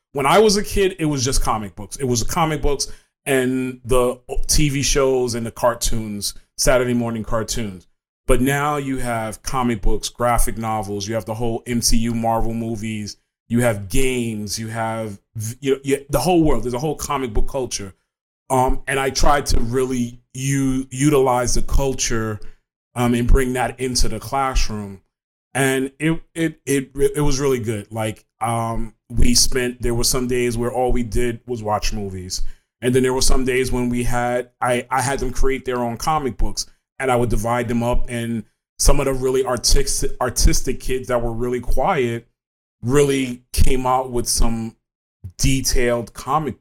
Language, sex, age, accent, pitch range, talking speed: English, male, 30-49, American, 115-135 Hz, 180 wpm